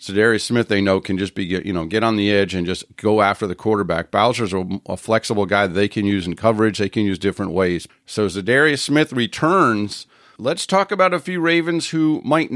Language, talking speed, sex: English, 220 wpm, male